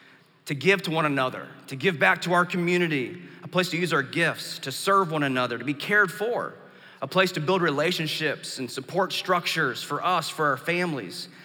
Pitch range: 150-185 Hz